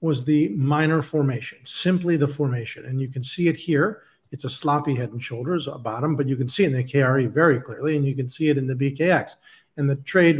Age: 40-59